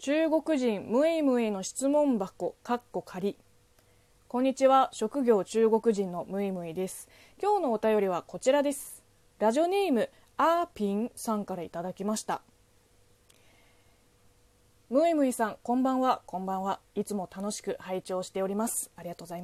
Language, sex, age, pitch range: Japanese, female, 20-39, 185-265 Hz